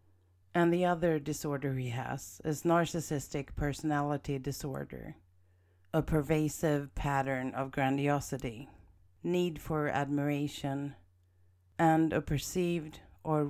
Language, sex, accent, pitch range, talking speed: English, female, Swedish, 125-155 Hz, 100 wpm